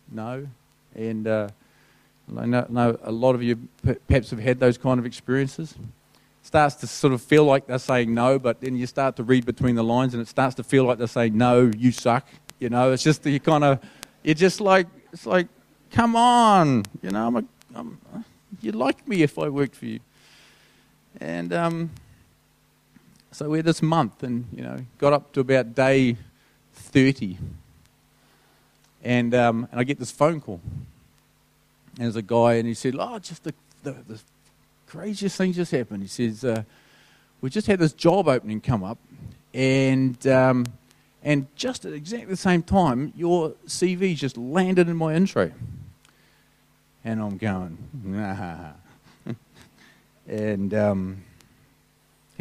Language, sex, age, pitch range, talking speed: English, male, 30-49, 115-150 Hz, 170 wpm